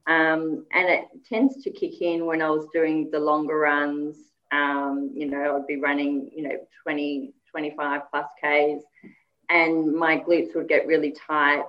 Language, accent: English, Australian